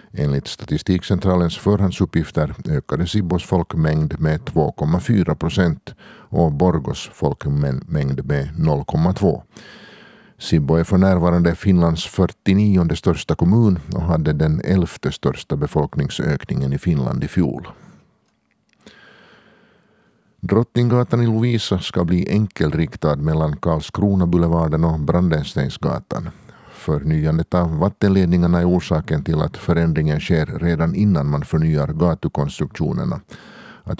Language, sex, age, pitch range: Swedish, male, 50-69, 75-95 Hz